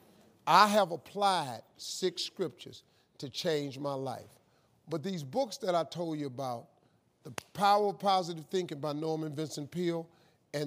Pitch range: 165-235 Hz